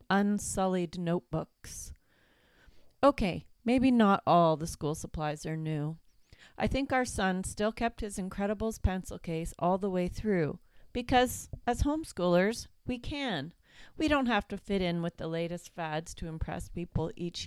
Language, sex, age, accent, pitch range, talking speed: English, female, 40-59, American, 165-220 Hz, 150 wpm